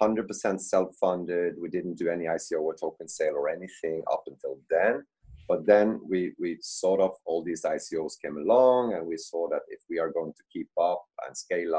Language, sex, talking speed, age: English, male, 200 wpm, 30-49